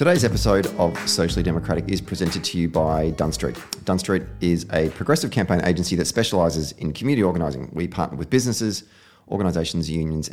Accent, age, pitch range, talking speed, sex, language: Australian, 30-49, 80-95 Hz, 165 wpm, male, English